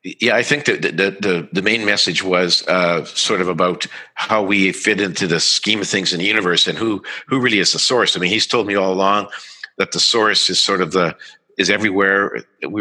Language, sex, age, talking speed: English, male, 50-69, 230 wpm